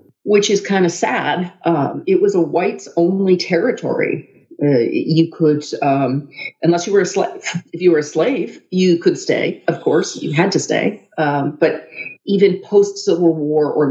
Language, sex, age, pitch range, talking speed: English, female, 40-59, 150-195 Hz, 175 wpm